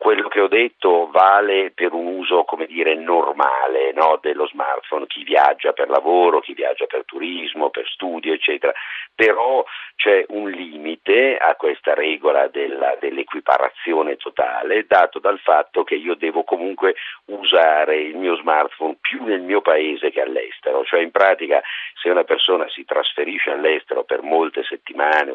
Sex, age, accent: male, 50-69, native